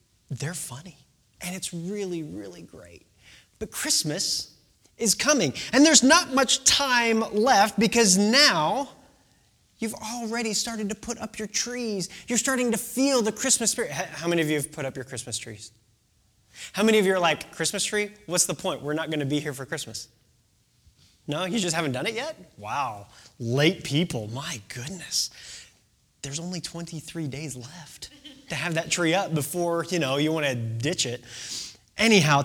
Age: 20-39